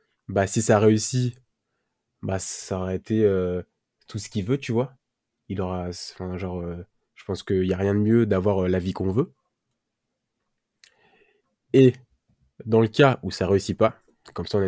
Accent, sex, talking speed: French, male, 190 wpm